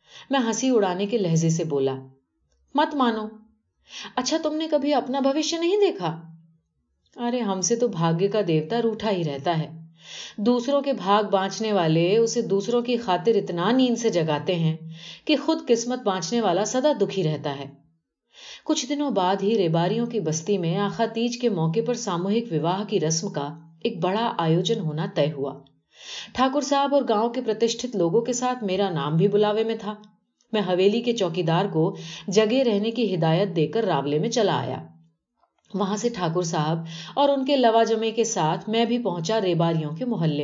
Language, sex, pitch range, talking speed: Urdu, female, 165-240 Hz, 170 wpm